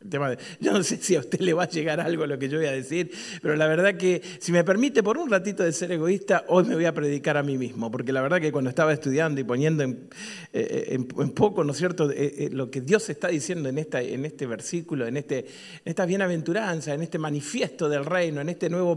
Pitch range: 145-185 Hz